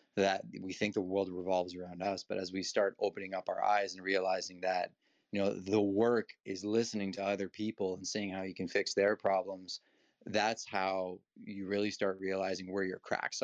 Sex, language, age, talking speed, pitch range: male, English, 20-39, 200 wpm, 95-115 Hz